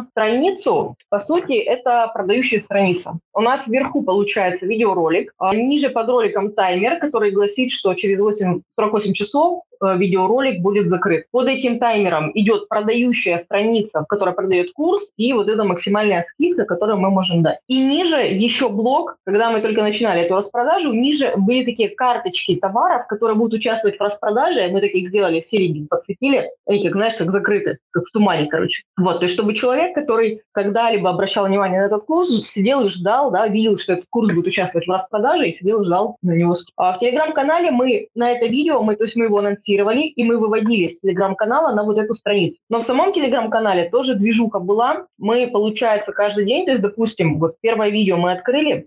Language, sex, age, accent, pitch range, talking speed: Russian, female, 20-39, native, 195-245 Hz, 180 wpm